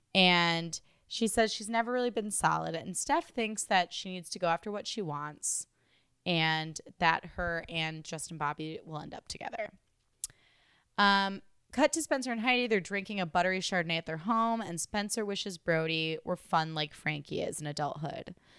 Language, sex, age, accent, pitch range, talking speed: English, female, 20-39, American, 165-220 Hz, 180 wpm